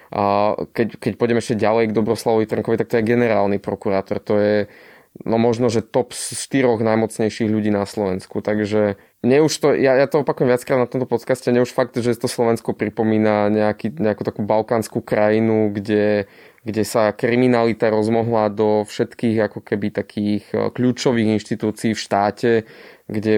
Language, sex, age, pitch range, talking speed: Slovak, male, 20-39, 105-120 Hz, 160 wpm